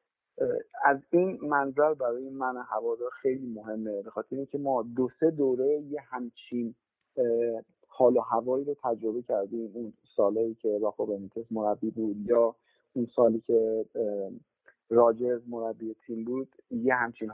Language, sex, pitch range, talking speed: Persian, male, 115-145 Hz, 135 wpm